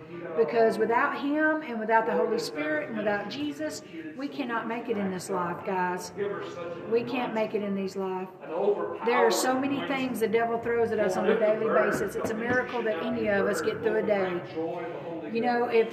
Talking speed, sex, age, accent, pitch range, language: 205 wpm, female, 50-69, American, 190-280 Hz, English